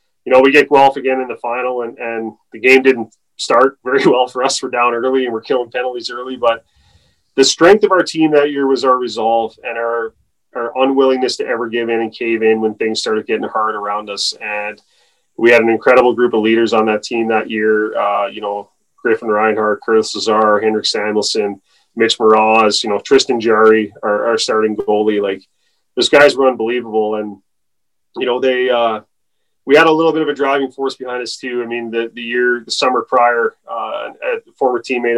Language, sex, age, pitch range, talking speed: English, male, 30-49, 110-130 Hz, 210 wpm